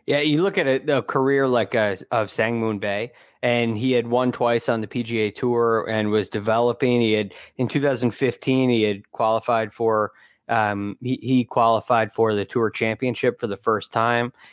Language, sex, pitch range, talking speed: English, male, 110-135 Hz, 180 wpm